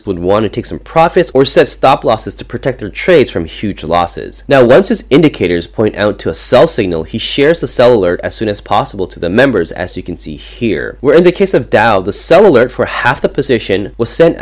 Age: 30-49